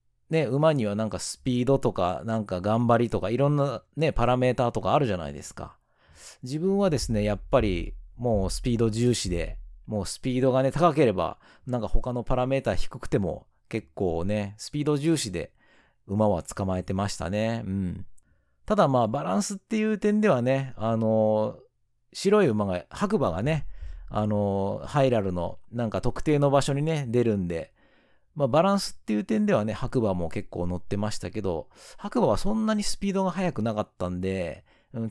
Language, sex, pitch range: Japanese, male, 95-135 Hz